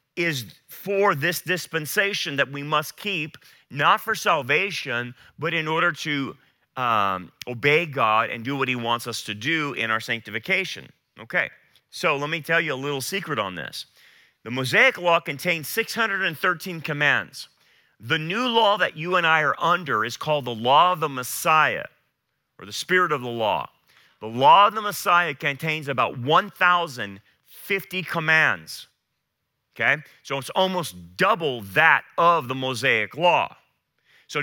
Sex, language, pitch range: male, English, 130-175 Hz